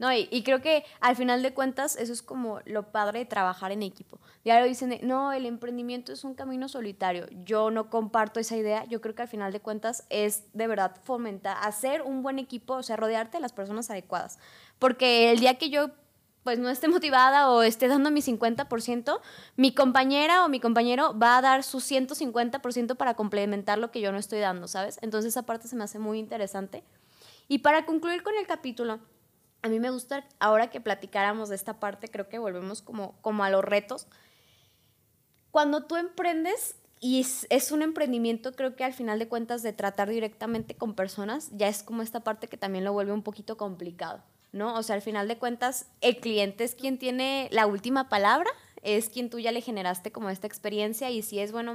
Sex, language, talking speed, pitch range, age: female, Spanish, 210 wpm, 210-260 Hz, 20-39